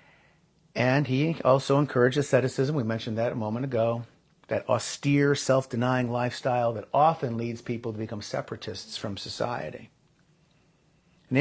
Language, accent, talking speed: English, American, 130 wpm